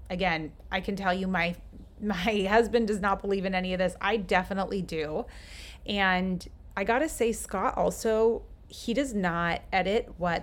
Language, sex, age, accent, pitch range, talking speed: English, female, 30-49, American, 175-205 Hz, 165 wpm